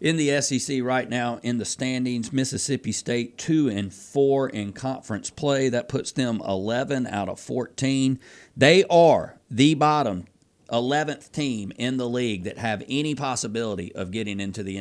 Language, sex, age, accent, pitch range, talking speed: English, male, 40-59, American, 110-130 Hz, 160 wpm